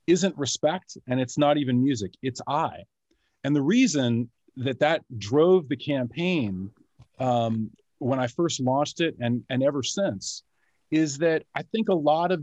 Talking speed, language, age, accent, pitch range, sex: 165 wpm, English, 40-59, American, 120-165 Hz, male